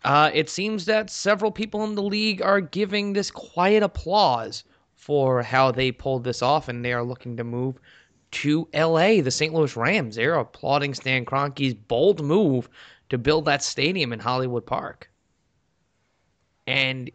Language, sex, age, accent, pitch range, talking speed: English, male, 20-39, American, 120-155 Hz, 160 wpm